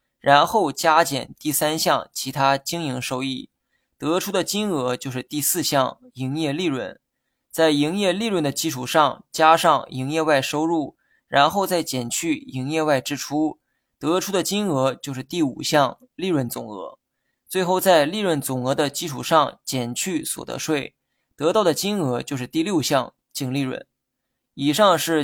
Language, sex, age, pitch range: Chinese, male, 20-39, 130-160 Hz